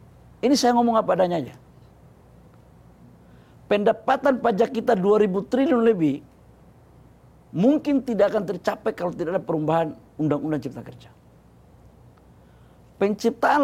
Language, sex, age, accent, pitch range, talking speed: Indonesian, male, 50-69, native, 165-235 Hz, 105 wpm